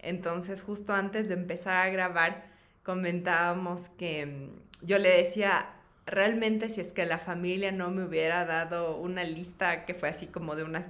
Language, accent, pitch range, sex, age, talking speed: Spanish, Mexican, 160-185 Hz, female, 20-39, 165 wpm